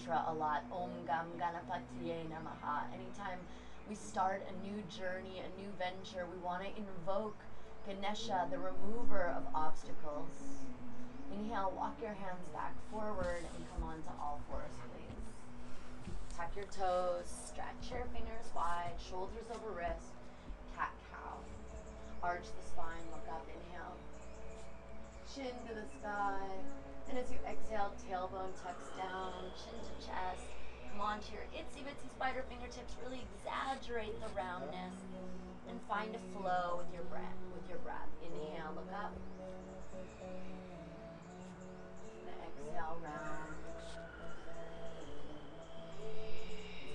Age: 30-49